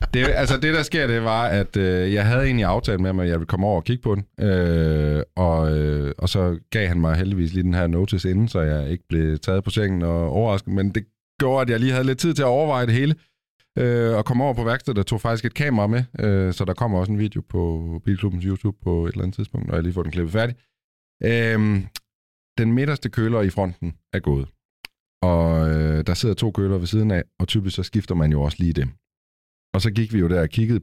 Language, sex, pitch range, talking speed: Danish, male, 85-110 Hz, 250 wpm